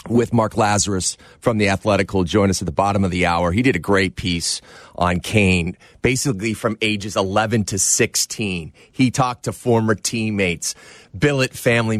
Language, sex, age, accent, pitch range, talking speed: English, male, 30-49, American, 100-125 Hz, 175 wpm